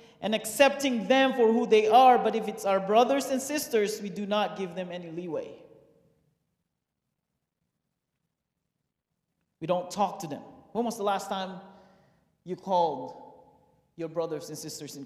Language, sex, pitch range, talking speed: English, male, 185-250 Hz, 150 wpm